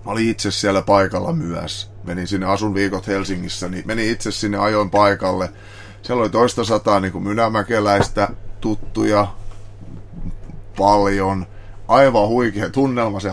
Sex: male